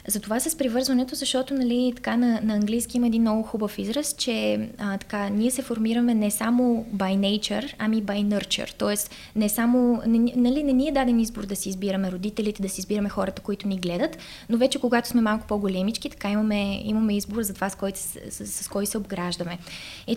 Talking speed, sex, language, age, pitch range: 195 wpm, female, Bulgarian, 20-39, 200-235 Hz